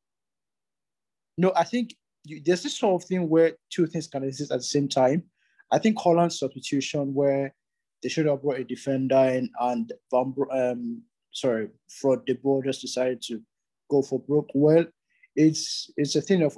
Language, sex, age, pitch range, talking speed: English, male, 20-39, 125-155 Hz, 175 wpm